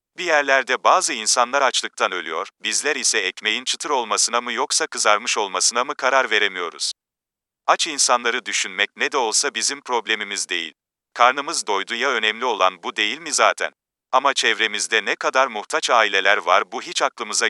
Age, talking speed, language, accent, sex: 40-59, 160 wpm, Turkish, native, male